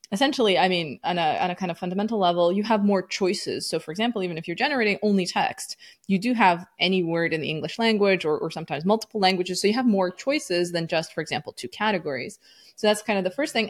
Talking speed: 245 wpm